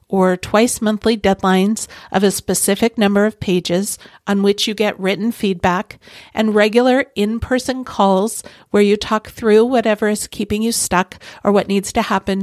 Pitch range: 185-220 Hz